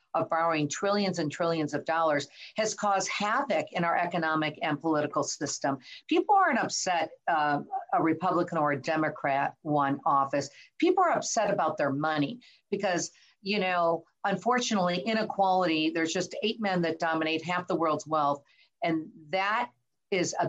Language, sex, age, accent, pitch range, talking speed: English, female, 50-69, American, 145-180 Hz, 150 wpm